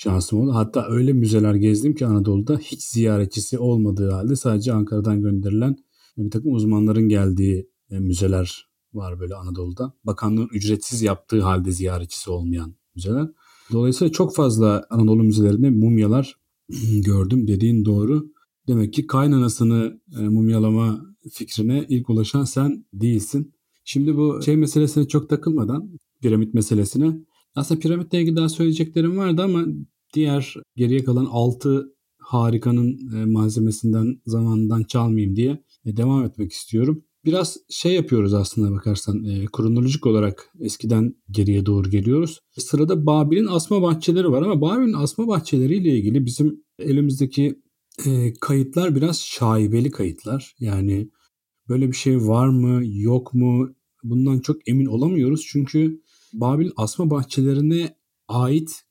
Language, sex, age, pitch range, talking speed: Turkish, male, 40-59, 110-145 Hz, 120 wpm